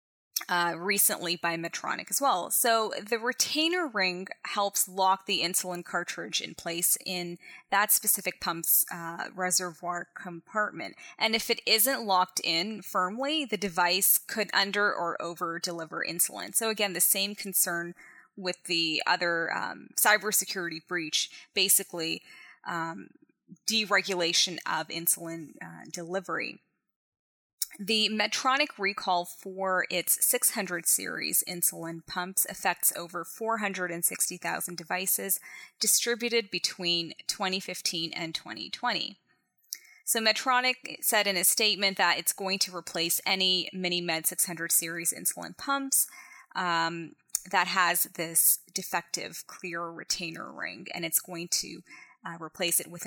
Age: 20-39